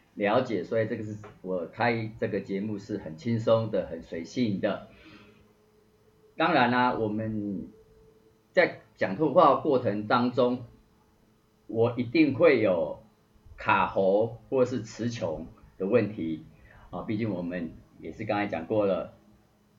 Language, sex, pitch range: Chinese, male, 95-120 Hz